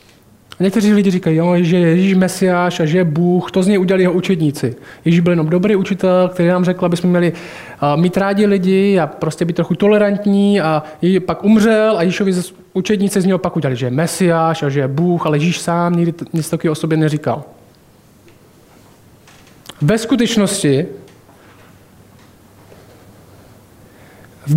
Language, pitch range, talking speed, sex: Czech, 145-195 Hz, 160 wpm, male